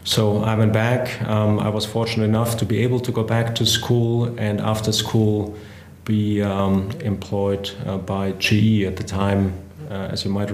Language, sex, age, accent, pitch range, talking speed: English, male, 30-49, German, 105-115 Hz, 190 wpm